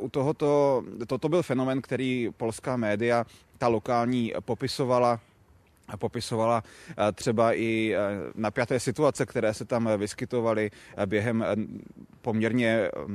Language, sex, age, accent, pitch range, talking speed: Czech, male, 30-49, native, 110-120 Hz, 100 wpm